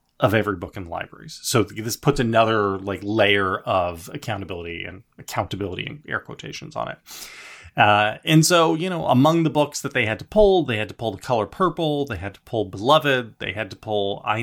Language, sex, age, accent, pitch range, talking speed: English, male, 30-49, American, 100-150 Hz, 210 wpm